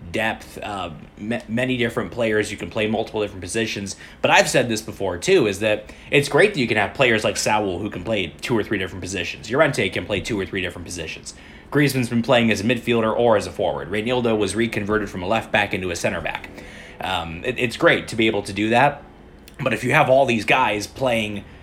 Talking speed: 235 wpm